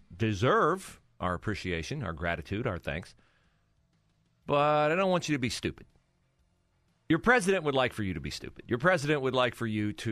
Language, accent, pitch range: English, American, 95-130 Hz